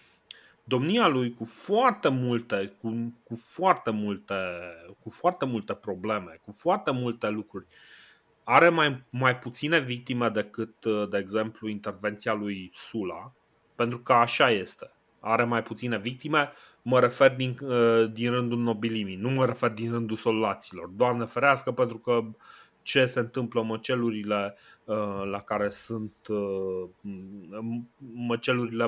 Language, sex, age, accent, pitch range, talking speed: Romanian, male, 30-49, native, 105-130 Hz, 130 wpm